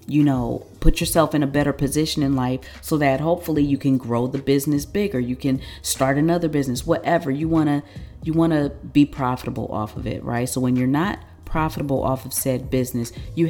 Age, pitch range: 40-59, 125-150 Hz